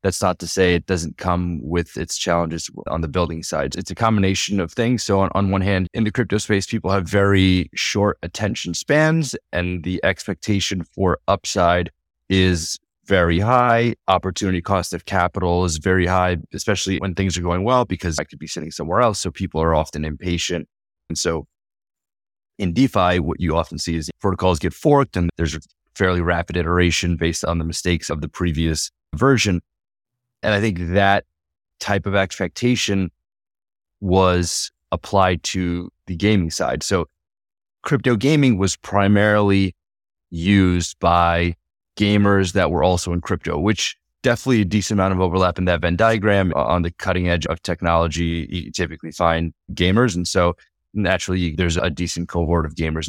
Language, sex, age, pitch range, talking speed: English, male, 30-49, 85-100 Hz, 170 wpm